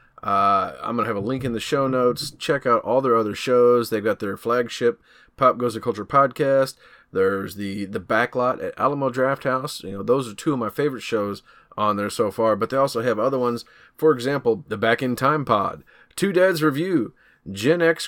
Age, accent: 30-49, American